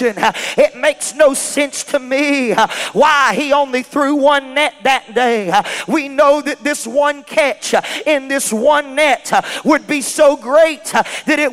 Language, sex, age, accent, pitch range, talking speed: English, male, 40-59, American, 285-320 Hz, 155 wpm